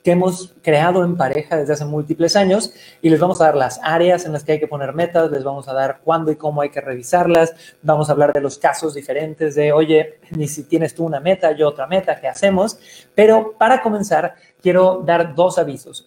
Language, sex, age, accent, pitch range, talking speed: Spanish, male, 30-49, Mexican, 150-185 Hz, 225 wpm